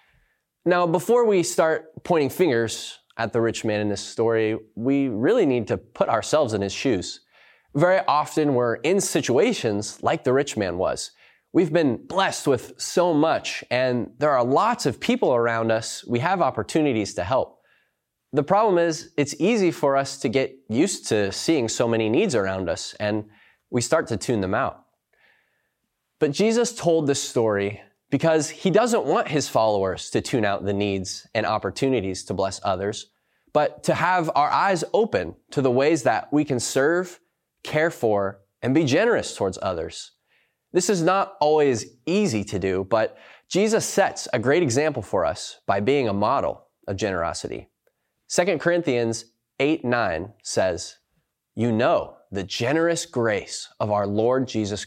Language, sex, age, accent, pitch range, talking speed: English, male, 20-39, American, 105-160 Hz, 165 wpm